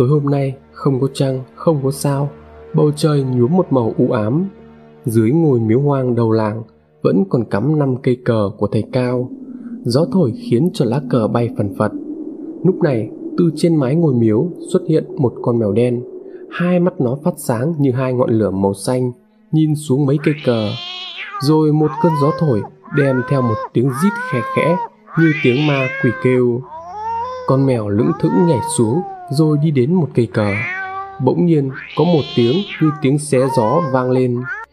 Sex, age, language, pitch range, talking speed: male, 20-39, Vietnamese, 120-165 Hz, 190 wpm